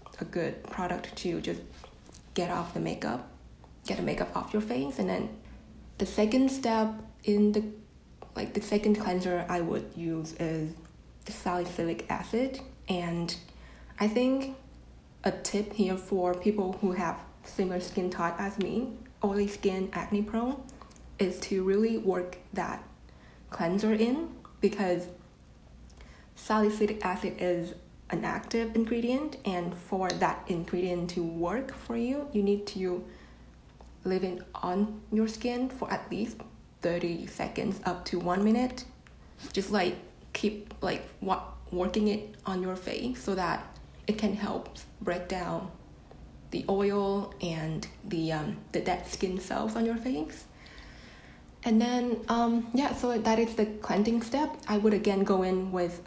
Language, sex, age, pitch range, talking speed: English, female, 20-39, 180-220 Hz, 145 wpm